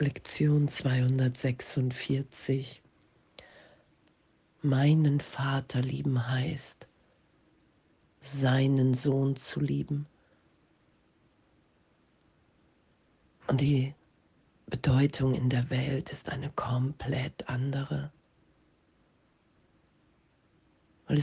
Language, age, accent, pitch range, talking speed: German, 40-59, German, 125-140 Hz, 60 wpm